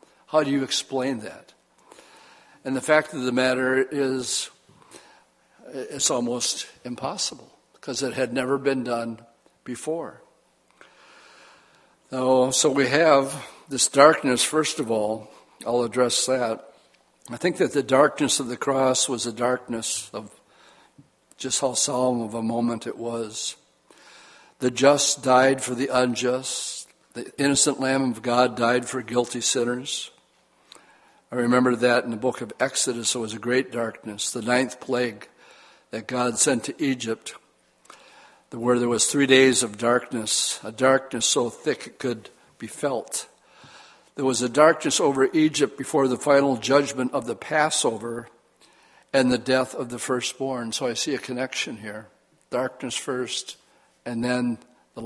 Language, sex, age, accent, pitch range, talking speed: English, male, 60-79, American, 120-135 Hz, 145 wpm